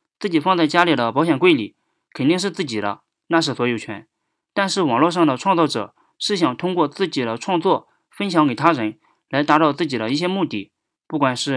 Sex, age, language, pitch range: male, 20-39, Chinese, 125-170 Hz